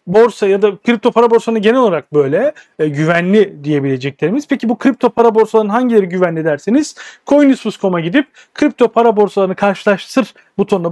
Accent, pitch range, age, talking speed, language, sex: native, 175-250 Hz, 40-59, 150 wpm, Turkish, male